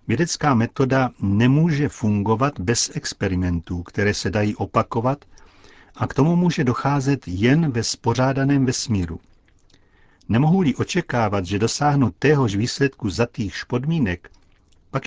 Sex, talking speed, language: male, 115 wpm, Czech